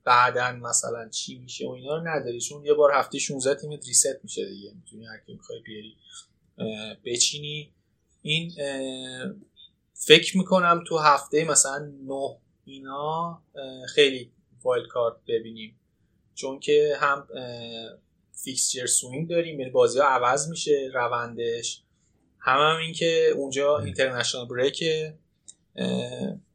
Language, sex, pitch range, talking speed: Persian, male, 120-160 Hz, 115 wpm